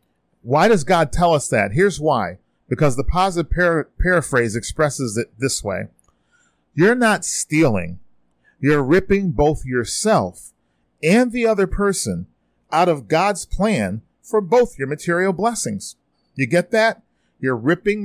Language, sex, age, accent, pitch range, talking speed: English, male, 40-59, American, 110-155 Hz, 140 wpm